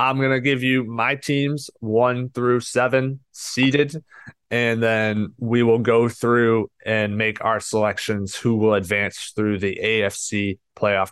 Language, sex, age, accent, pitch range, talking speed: English, male, 20-39, American, 105-120 Hz, 145 wpm